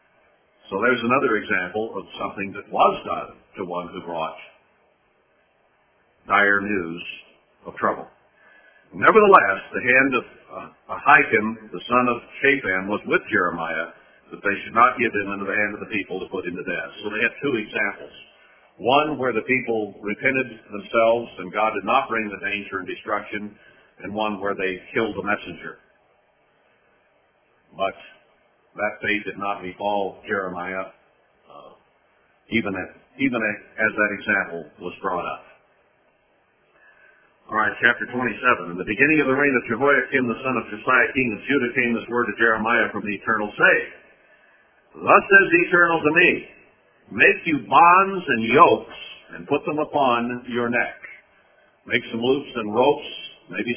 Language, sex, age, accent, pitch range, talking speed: English, male, 60-79, American, 100-125 Hz, 160 wpm